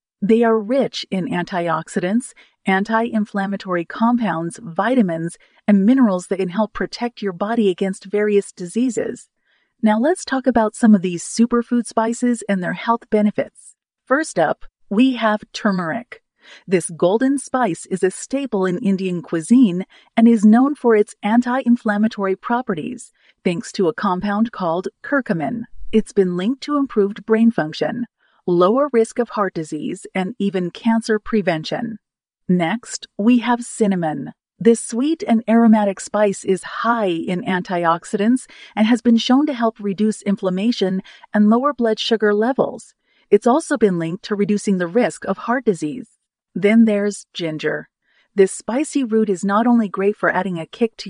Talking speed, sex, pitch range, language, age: 150 wpm, female, 190-235 Hz, English, 40-59